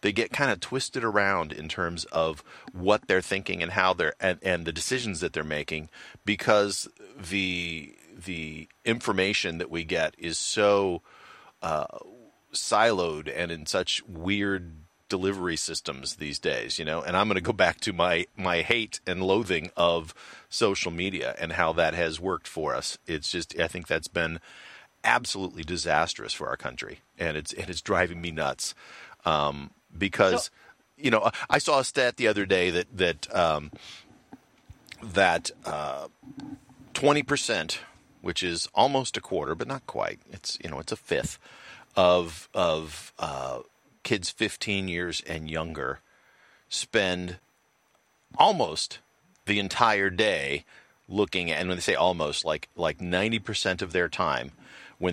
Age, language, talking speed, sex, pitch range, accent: 40-59, English, 155 wpm, male, 80-100 Hz, American